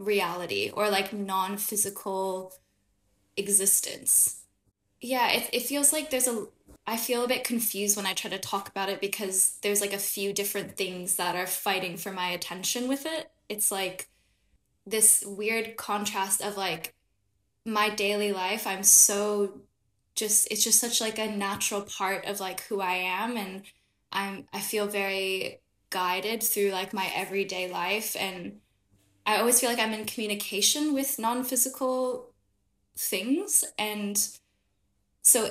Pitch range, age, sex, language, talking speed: 190-220 Hz, 10-29, female, English, 150 wpm